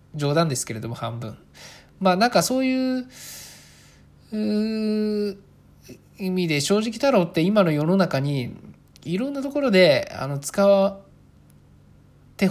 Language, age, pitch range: Japanese, 20-39, 140-210 Hz